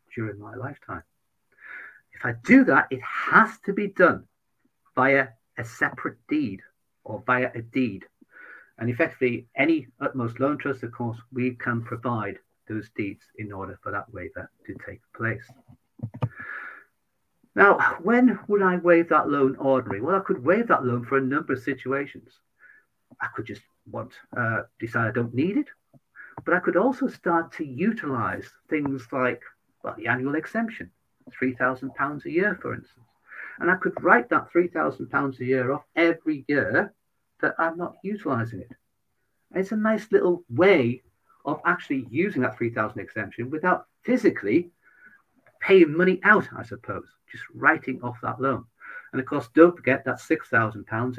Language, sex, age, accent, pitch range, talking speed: English, male, 50-69, British, 120-175 Hz, 155 wpm